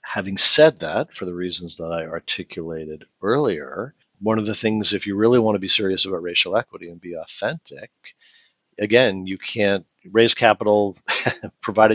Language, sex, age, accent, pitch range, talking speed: English, male, 50-69, American, 85-105 Hz, 165 wpm